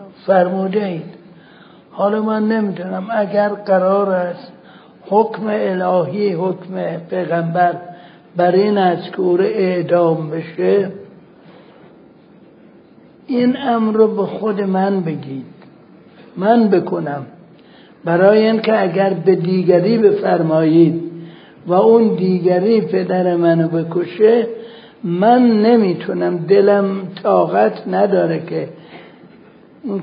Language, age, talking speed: Persian, 60-79, 90 wpm